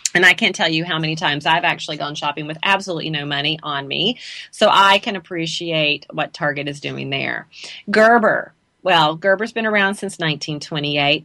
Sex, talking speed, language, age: female, 180 wpm, English, 40-59